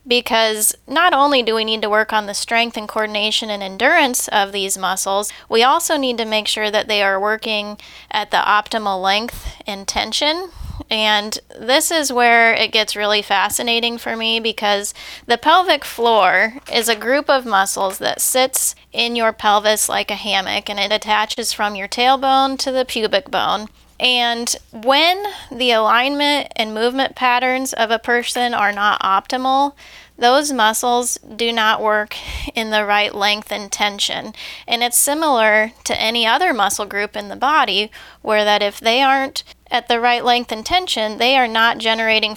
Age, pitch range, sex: 10-29, 215-255 Hz, female